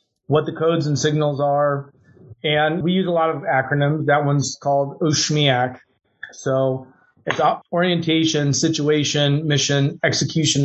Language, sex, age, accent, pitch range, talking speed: English, male, 30-49, American, 135-165 Hz, 130 wpm